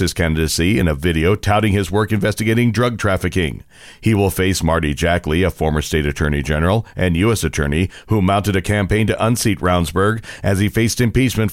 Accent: American